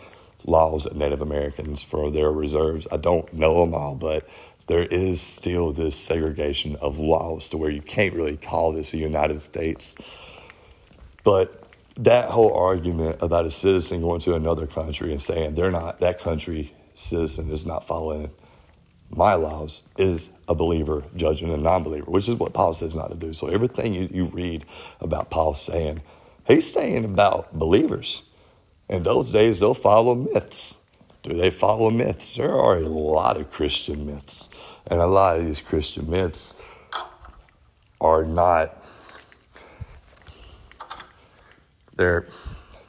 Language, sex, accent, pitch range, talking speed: English, male, American, 75-85 Hz, 150 wpm